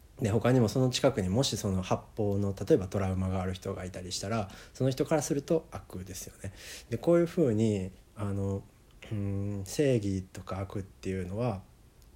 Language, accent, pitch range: Japanese, native, 95-115 Hz